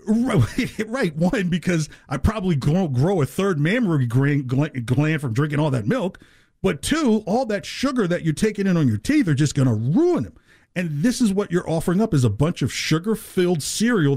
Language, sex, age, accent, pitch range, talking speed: English, male, 40-59, American, 145-200 Hz, 200 wpm